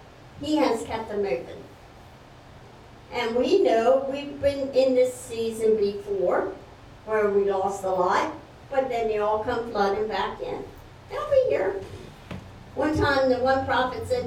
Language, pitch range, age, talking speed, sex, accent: English, 200-290 Hz, 60-79, 150 wpm, male, American